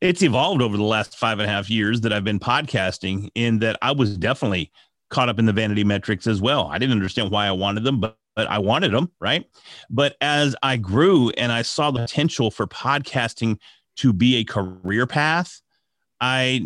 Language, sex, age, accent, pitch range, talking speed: English, male, 30-49, American, 115-150 Hz, 205 wpm